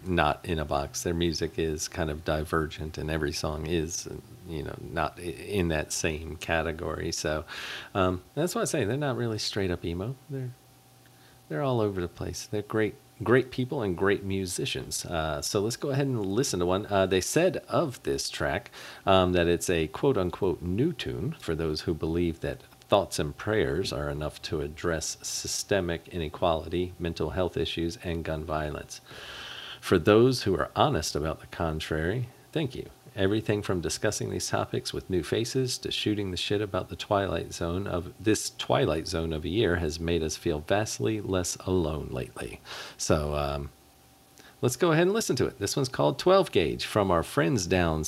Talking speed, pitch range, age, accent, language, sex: 185 wpm, 80-105 Hz, 40-59, American, English, male